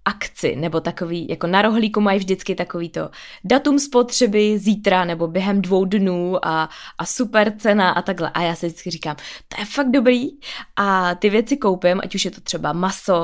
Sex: female